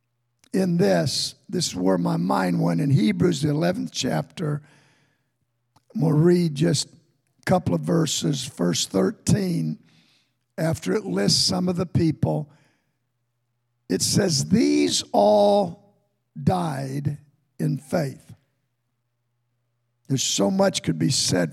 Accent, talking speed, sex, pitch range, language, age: American, 115 wpm, male, 120-175 Hz, English, 50-69